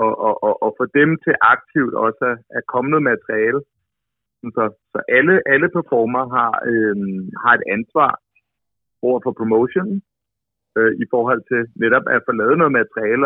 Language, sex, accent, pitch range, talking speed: Danish, male, native, 105-125 Hz, 155 wpm